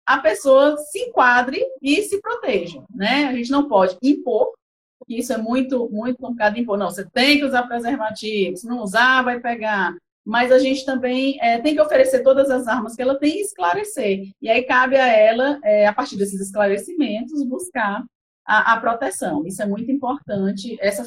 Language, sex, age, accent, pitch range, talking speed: Portuguese, female, 30-49, Brazilian, 215-275 Hz, 190 wpm